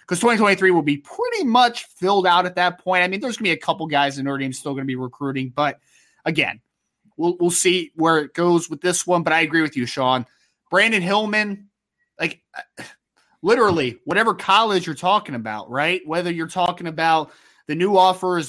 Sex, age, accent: male, 20-39, American